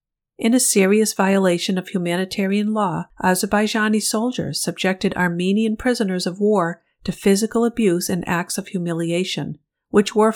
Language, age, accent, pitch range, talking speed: English, 50-69, American, 175-210 Hz, 135 wpm